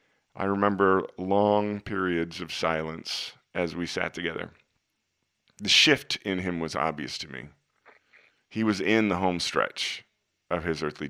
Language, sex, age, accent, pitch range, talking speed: English, male, 40-59, American, 90-115 Hz, 145 wpm